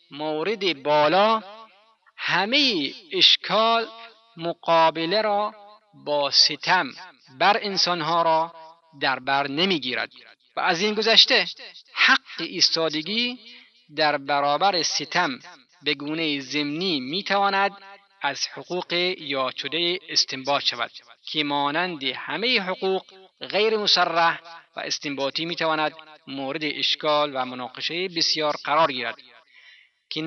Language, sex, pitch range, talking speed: Persian, male, 140-185 Hz, 105 wpm